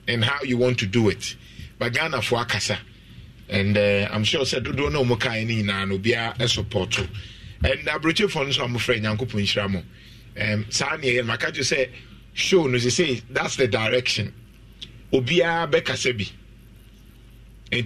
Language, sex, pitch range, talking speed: English, male, 110-155 Hz, 195 wpm